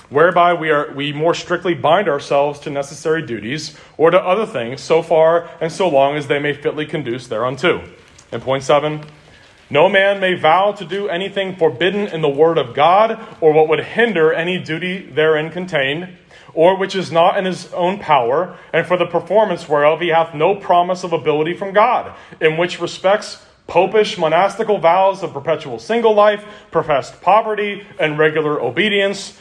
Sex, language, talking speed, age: male, English, 175 wpm, 30-49